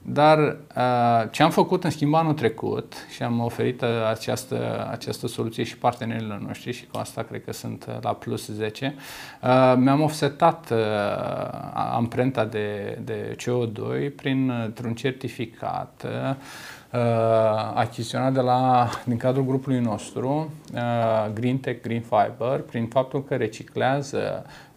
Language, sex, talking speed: Romanian, male, 120 wpm